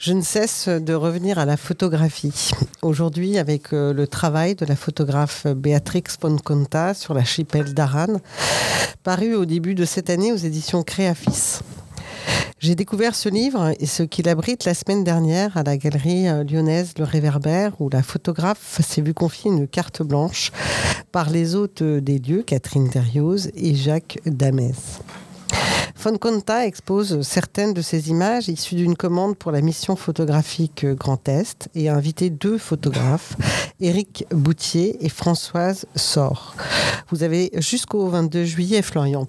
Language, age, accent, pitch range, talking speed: French, 50-69, French, 145-180 Hz, 150 wpm